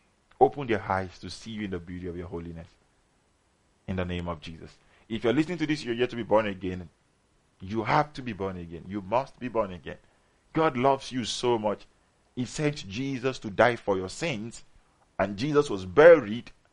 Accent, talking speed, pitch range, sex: Nigerian, 210 wpm, 95-130 Hz, male